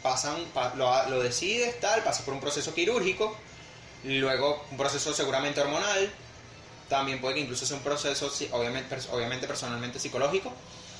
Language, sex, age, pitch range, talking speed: Spanish, male, 20-39, 130-160 Hz, 130 wpm